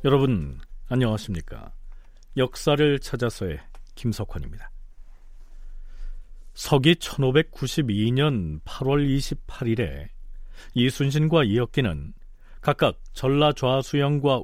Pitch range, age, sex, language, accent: 105-150 Hz, 40-59, male, Korean, native